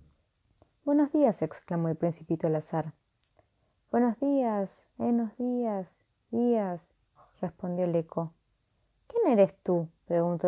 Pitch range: 165-230 Hz